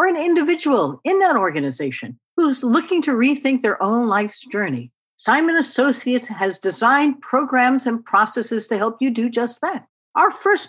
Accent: American